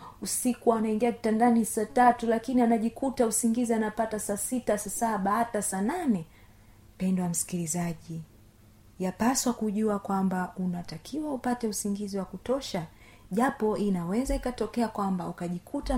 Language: Swahili